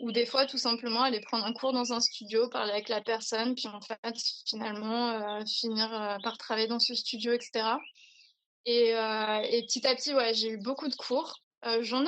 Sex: female